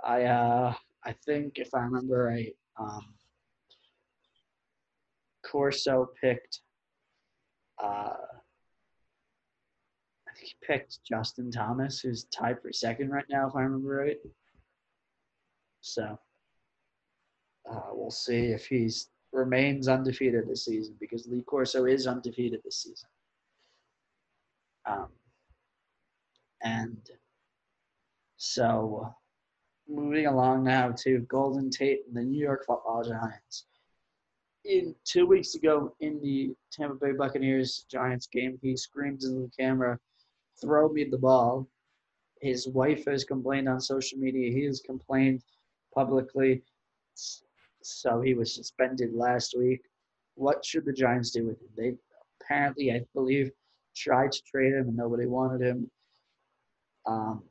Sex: male